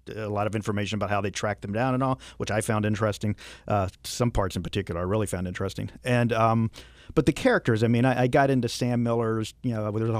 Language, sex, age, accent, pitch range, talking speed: English, male, 50-69, American, 100-120 Hz, 245 wpm